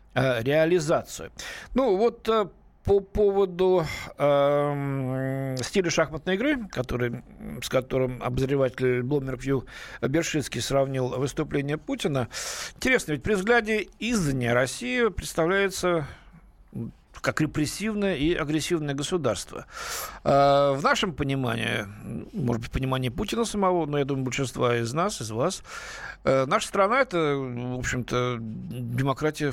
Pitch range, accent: 130-165 Hz, native